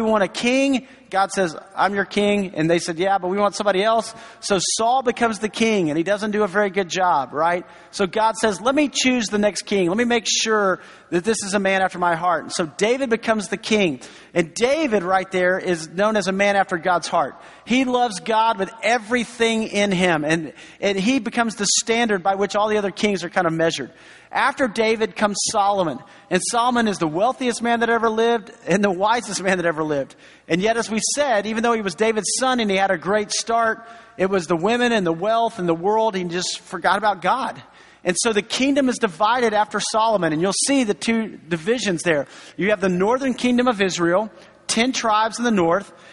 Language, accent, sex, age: English, American, male, 40-59